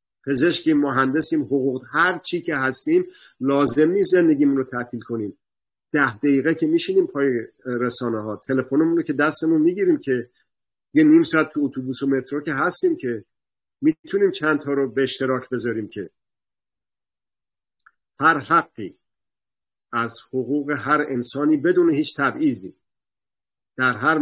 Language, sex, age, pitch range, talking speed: Persian, male, 50-69, 130-165 Hz, 135 wpm